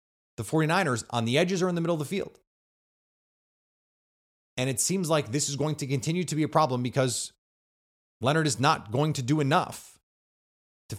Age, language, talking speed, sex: 30-49, English, 185 wpm, male